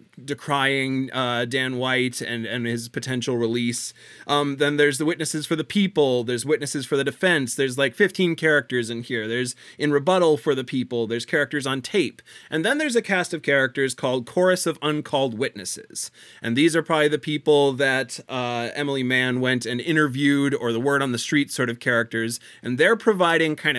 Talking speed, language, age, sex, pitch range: 190 wpm, English, 30-49, male, 125-150 Hz